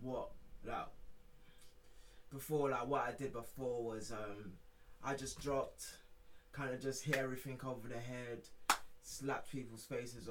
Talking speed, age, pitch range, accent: 140 wpm, 20-39, 100-125 Hz, British